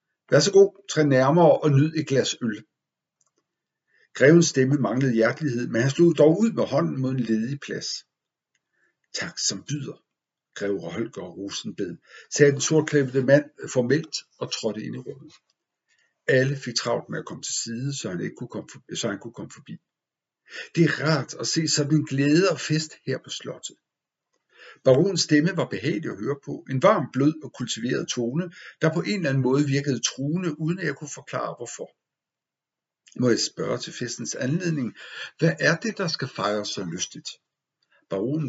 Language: Danish